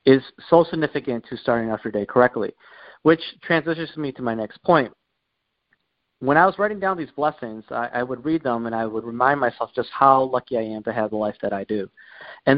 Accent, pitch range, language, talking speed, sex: American, 120-165 Hz, English, 220 wpm, male